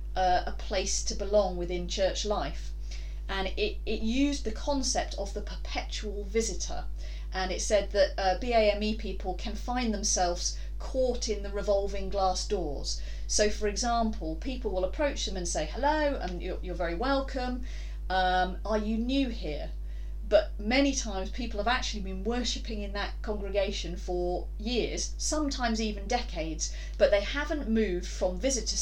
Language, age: English, 40-59